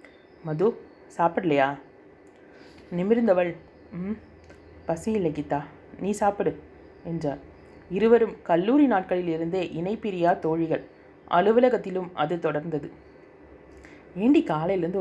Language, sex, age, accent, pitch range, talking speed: Tamil, female, 30-49, native, 160-195 Hz, 80 wpm